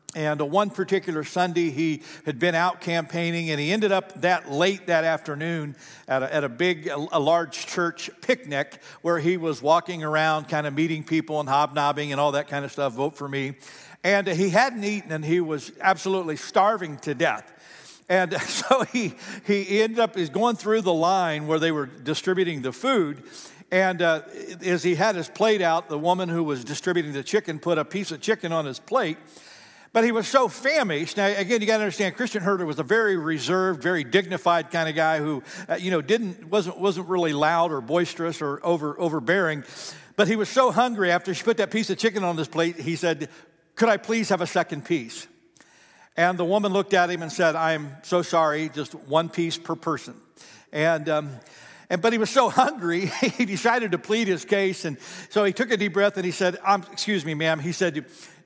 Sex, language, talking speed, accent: male, English, 210 wpm, American